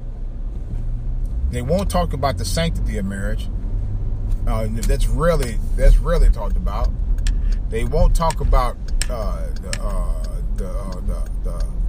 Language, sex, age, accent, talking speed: English, male, 30-49, American, 125 wpm